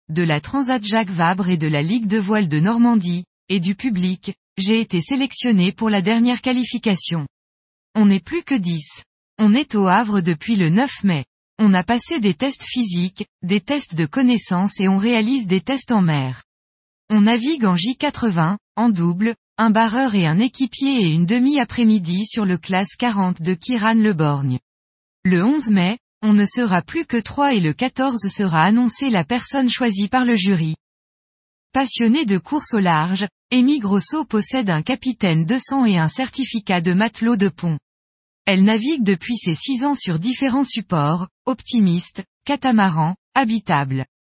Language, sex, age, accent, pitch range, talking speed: French, female, 20-39, French, 180-245 Hz, 170 wpm